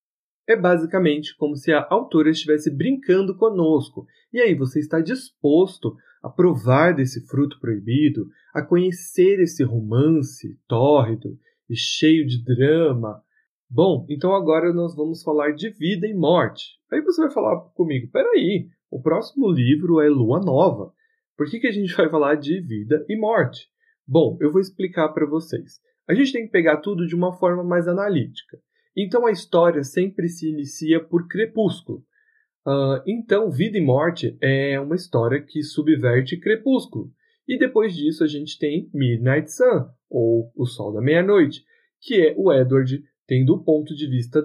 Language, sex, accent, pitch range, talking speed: Portuguese, male, Brazilian, 145-200 Hz, 160 wpm